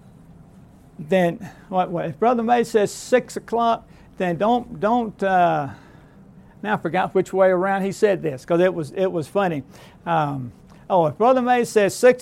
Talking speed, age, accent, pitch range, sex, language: 160 wpm, 60-79, American, 175-235 Hz, male, English